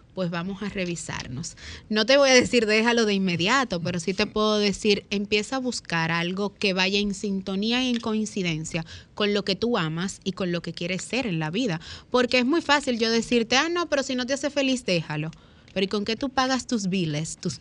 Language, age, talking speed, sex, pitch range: Spanish, 30-49, 225 wpm, female, 180-250 Hz